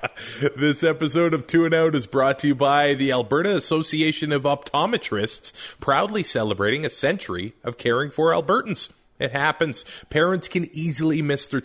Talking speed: 160 wpm